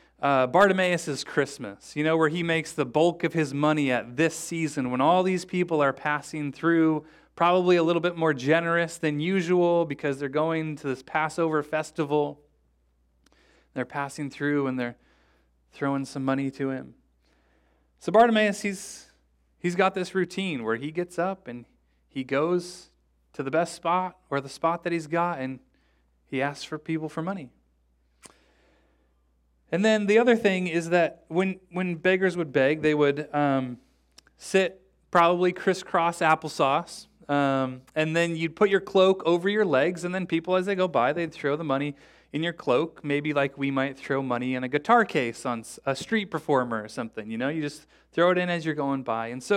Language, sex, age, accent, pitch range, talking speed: English, male, 30-49, American, 130-175 Hz, 185 wpm